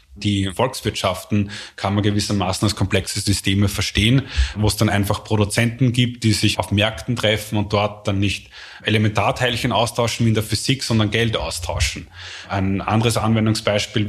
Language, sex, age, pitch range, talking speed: German, male, 20-39, 100-115 Hz, 155 wpm